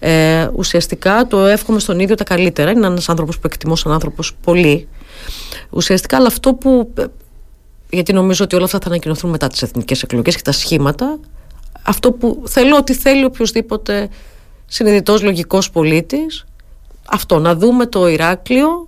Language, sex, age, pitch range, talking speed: Greek, female, 40-59, 170-240 Hz, 150 wpm